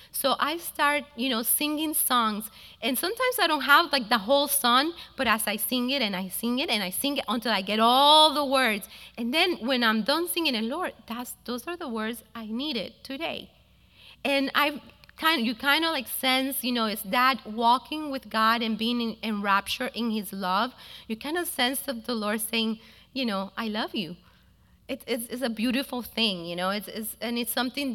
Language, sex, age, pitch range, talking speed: English, female, 30-49, 220-275 Hz, 215 wpm